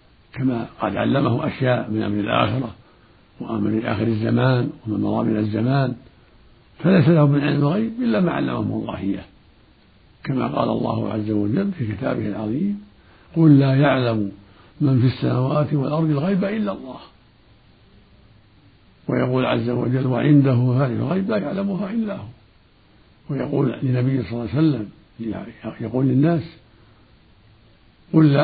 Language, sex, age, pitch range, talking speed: Arabic, male, 60-79, 110-155 Hz, 130 wpm